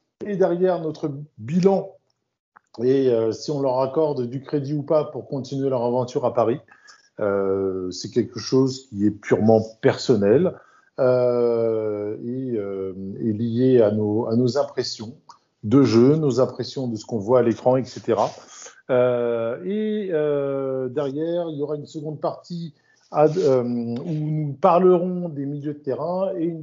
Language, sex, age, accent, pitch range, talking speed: French, male, 50-69, French, 120-155 Hz, 150 wpm